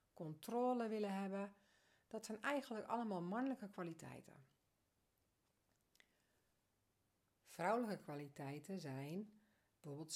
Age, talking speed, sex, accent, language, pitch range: 60-79, 75 wpm, female, Dutch, Dutch, 145-200 Hz